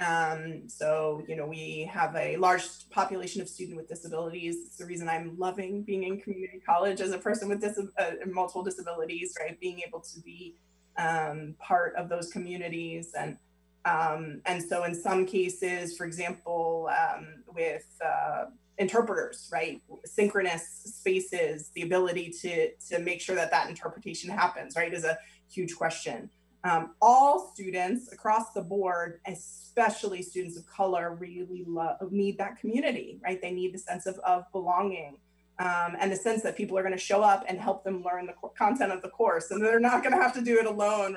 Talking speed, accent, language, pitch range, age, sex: 180 wpm, American, English, 170-195 Hz, 20-39, female